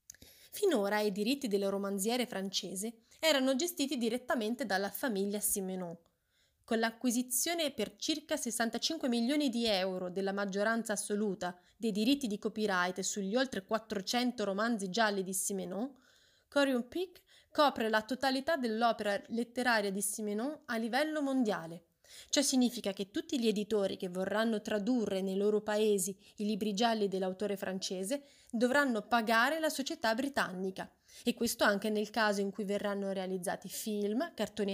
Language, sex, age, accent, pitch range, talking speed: Italian, female, 20-39, native, 200-250 Hz, 135 wpm